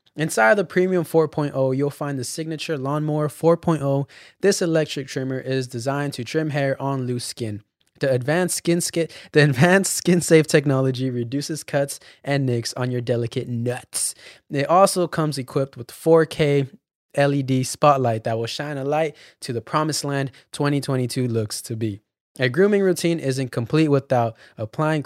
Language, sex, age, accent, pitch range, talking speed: English, male, 20-39, American, 125-160 Hz, 160 wpm